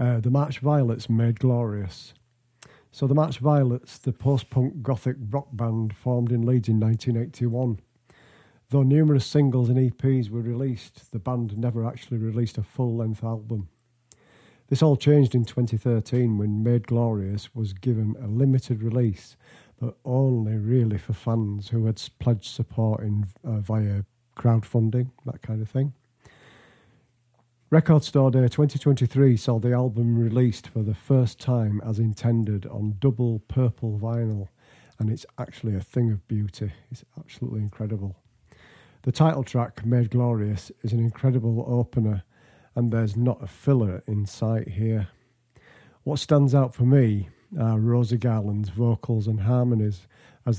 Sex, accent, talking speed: male, British, 145 wpm